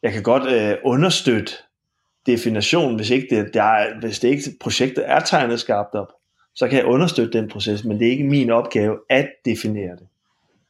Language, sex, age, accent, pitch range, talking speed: Danish, male, 30-49, native, 110-130 Hz, 180 wpm